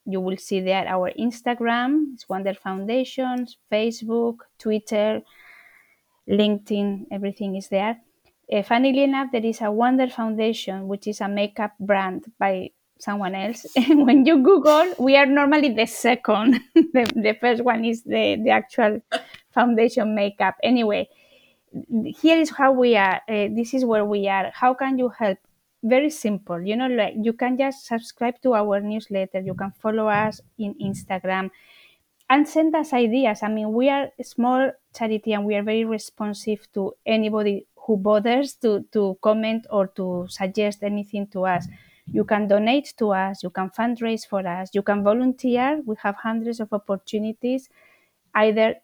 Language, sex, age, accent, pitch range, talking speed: English, female, 20-39, Spanish, 200-245 Hz, 160 wpm